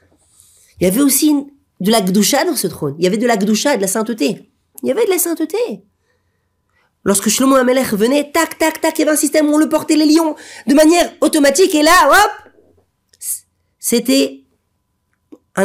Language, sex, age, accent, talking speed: French, female, 40-59, French, 195 wpm